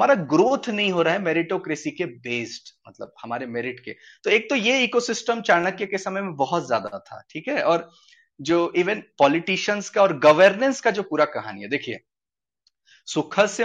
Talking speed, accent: 180 wpm, native